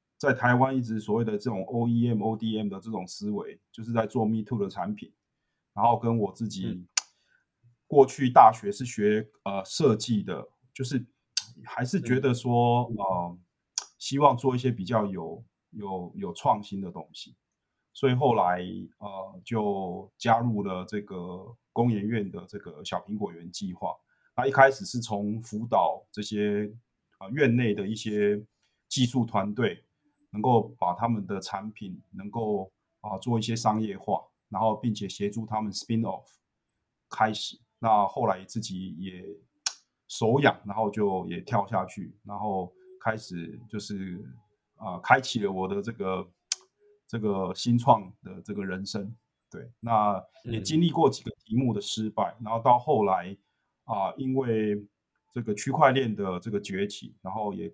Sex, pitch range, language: male, 100-120 Hz, Chinese